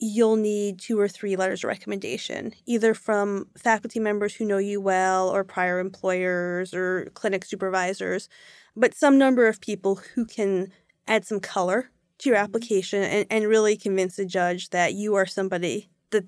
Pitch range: 190-230 Hz